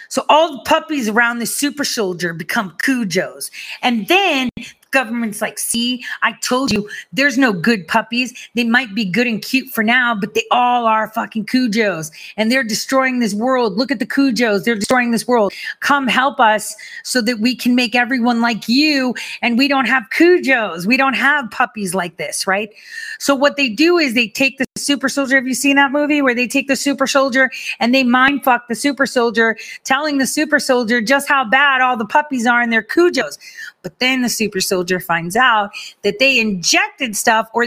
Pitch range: 210-275 Hz